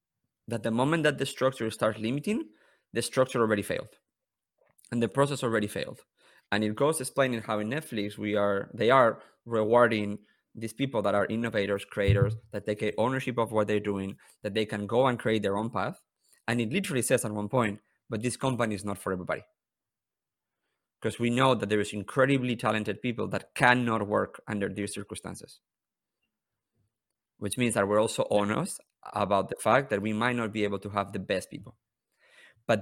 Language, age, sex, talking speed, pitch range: English, 30-49, male, 185 wpm, 105-125 Hz